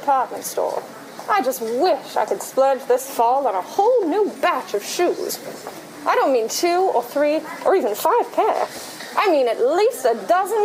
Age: 30-49